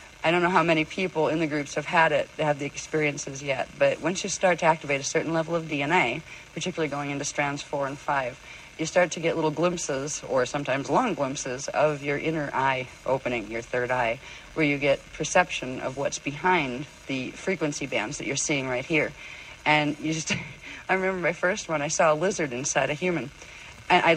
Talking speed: 205 wpm